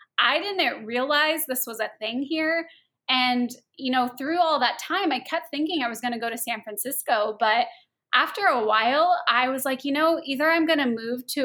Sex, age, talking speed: female, 20-39, 215 wpm